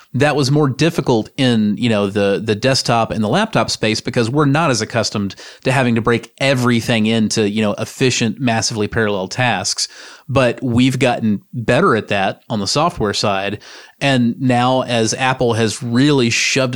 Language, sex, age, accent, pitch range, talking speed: English, male, 30-49, American, 110-140 Hz, 170 wpm